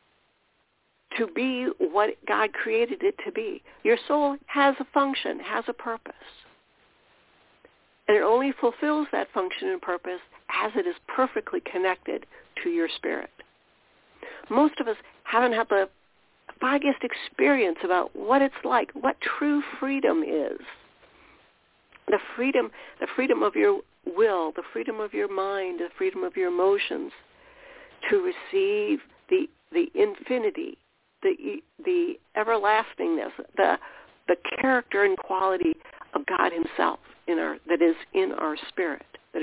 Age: 60-79